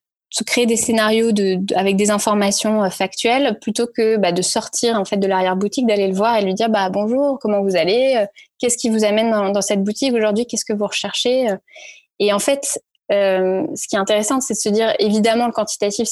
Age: 20-39